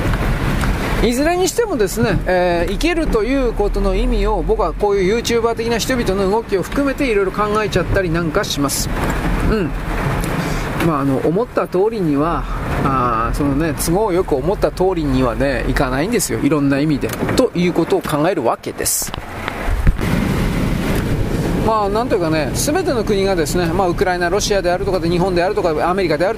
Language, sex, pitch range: Japanese, male, 185-265 Hz